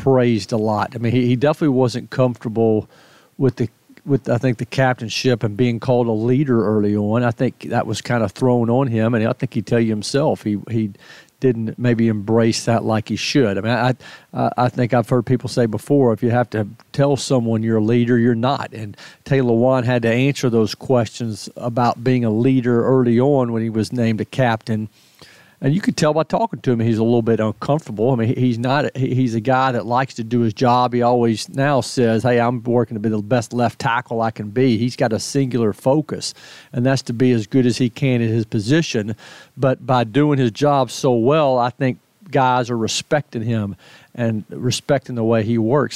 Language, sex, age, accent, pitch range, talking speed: English, male, 50-69, American, 115-130 Hz, 220 wpm